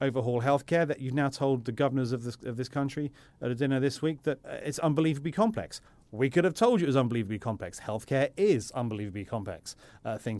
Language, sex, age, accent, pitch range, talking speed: English, male, 30-49, British, 115-155 Hz, 210 wpm